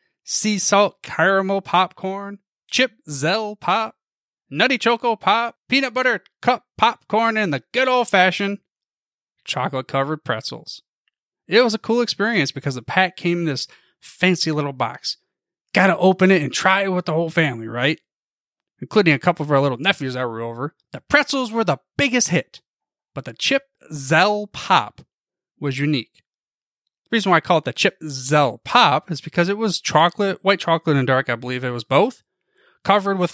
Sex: male